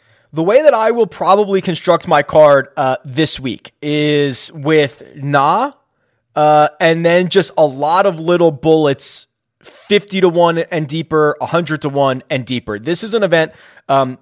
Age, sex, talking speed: 20-39, male, 170 wpm